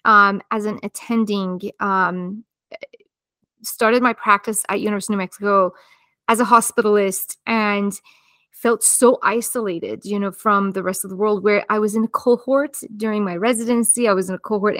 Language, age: English, 20-39